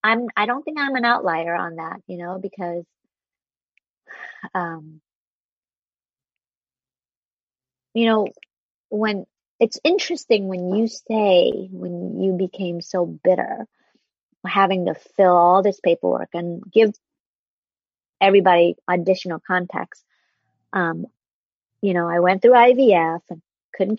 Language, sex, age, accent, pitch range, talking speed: English, female, 30-49, American, 165-210 Hz, 115 wpm